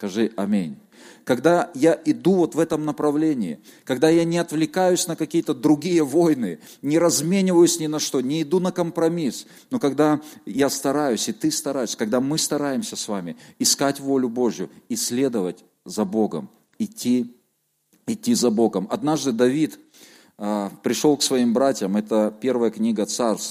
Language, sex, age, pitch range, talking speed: Russian, male, 40-59, 115-170 Hz, 150 wpm